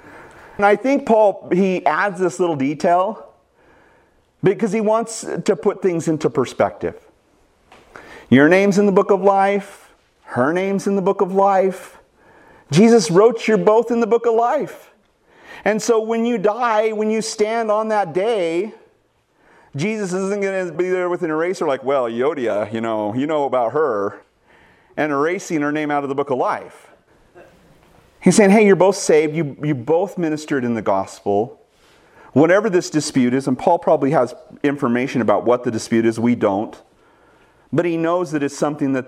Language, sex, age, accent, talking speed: English, male, 40-59, American, 175 wpm